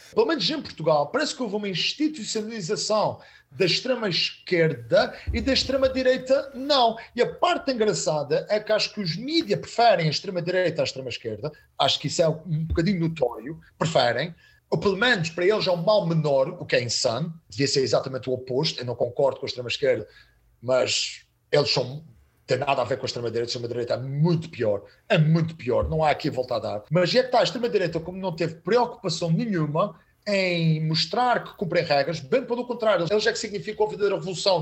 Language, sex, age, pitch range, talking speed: Portuguese, male, 40-59, 165-265 Hz, 205 wpm